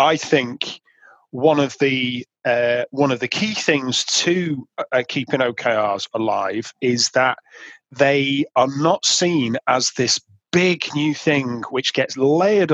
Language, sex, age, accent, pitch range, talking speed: English, male, 30-49, British, 125-170 Hz, 140 wpm